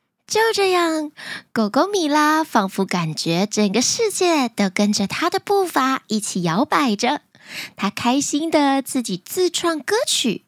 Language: Chinese